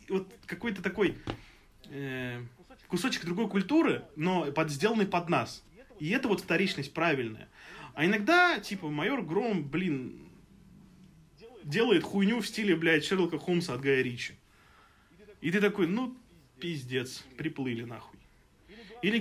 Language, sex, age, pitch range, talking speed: Russian, male, 20-39, 150-205 Hz, 125 wpm